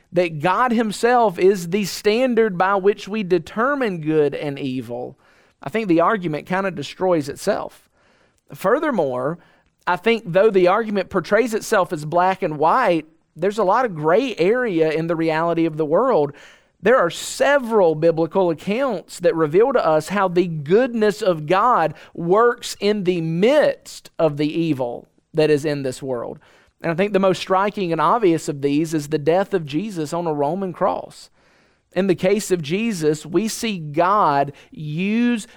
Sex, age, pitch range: male, 40-59, 165-220 Hz